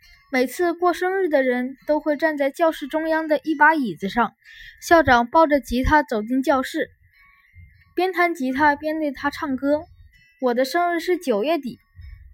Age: 10-29